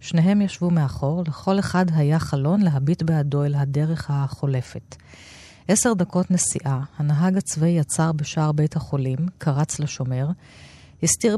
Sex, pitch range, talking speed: female, 140-175 Hz, 125 wpm